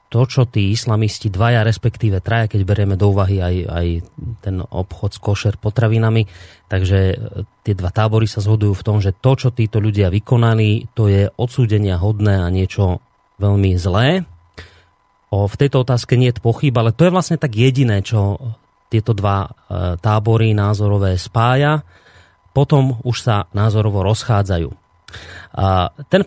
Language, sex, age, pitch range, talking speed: Slovak, male, 30-49, 100-125 Hz, 150 wpm